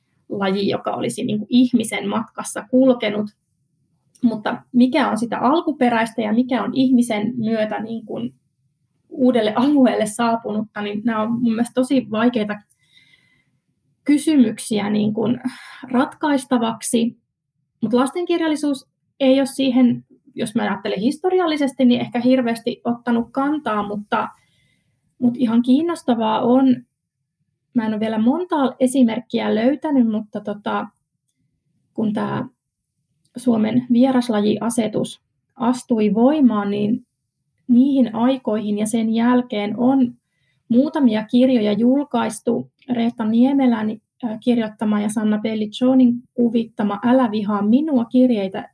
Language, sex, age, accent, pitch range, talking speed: Finnish, female, 20-39, native, 210-250 Hz, 105 wpm